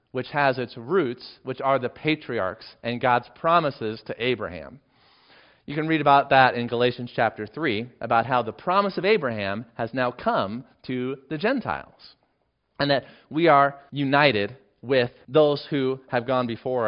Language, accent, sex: English, American, male